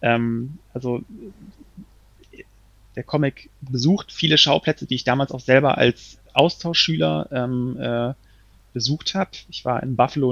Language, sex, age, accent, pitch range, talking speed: German, male, 30-49, German, 110-130 Hz, 120 wpm